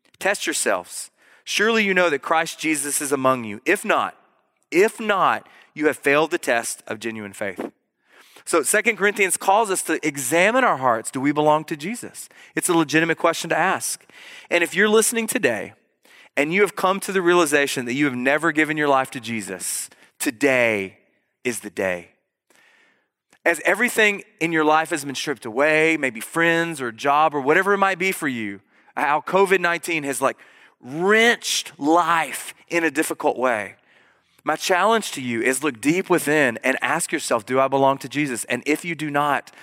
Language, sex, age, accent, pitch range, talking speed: English, male, 30-49, American, 135-175 Hz, 180 wpm